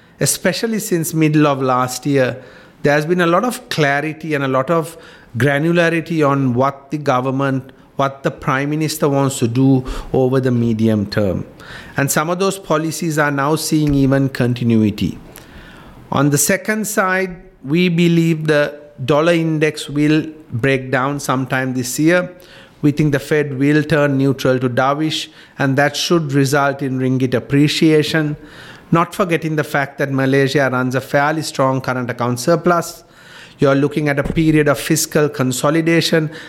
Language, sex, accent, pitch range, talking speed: English, male, Indian, 135-165 Hz, 155 wpm